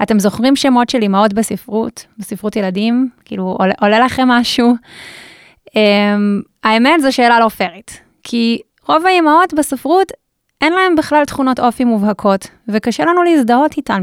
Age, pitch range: 20-39, 205-260 Hz